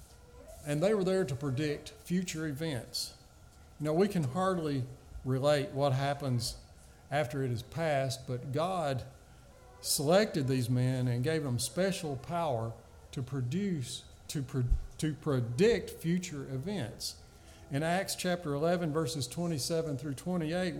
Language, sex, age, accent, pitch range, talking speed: English, male, 50-69, American, 130-165 Hz, 130 wpm